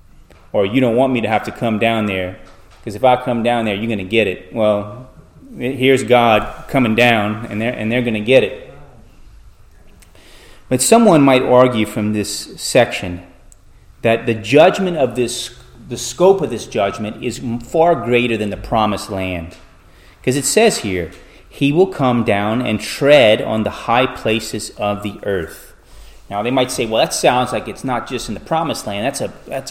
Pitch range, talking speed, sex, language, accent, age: 105-130 Hz, 190 wpm, male, English, American, 30-49